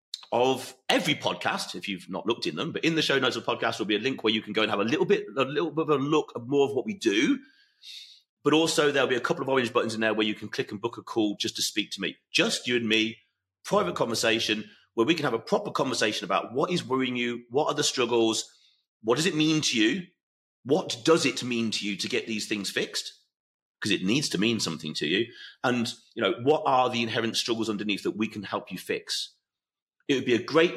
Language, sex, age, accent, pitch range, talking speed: English, male, 30-49, British, 110-150 Hz, 255 wpm